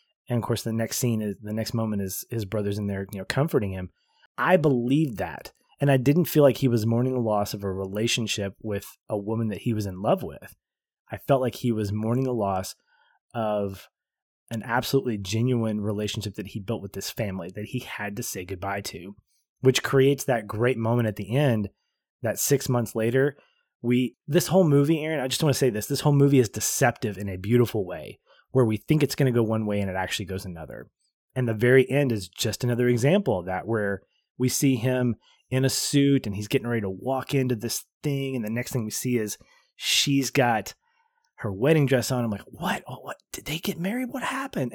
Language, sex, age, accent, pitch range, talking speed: English, male, 20-39, American, 105-135 Hz, 225 wpm